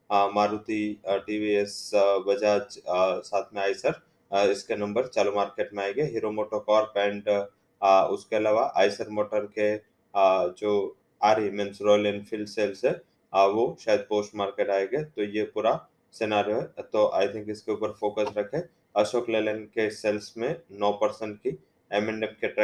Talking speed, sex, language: 145 wpm, male, English